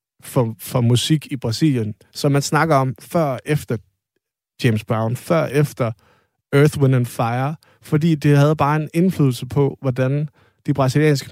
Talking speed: 150 wpm